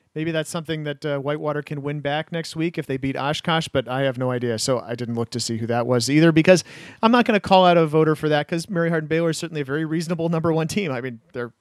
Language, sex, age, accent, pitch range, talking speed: English, male, 40-59, American, 130-165 Hz, 285 wpm